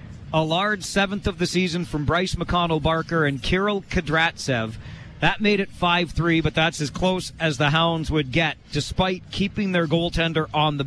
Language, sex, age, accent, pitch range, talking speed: English, male, 40-59, American, 140-175 Hz, 170 wpm